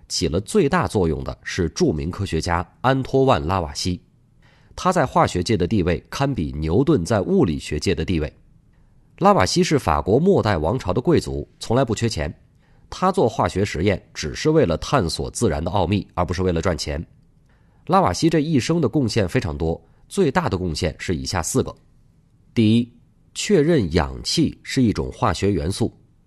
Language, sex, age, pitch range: Chinese, male, 30-49, 85-130 Hz